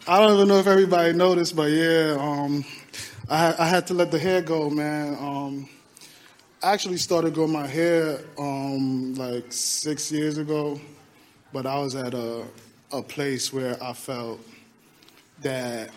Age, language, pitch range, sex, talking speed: 20-39, English, 130-155 Hz, male, 160 wpm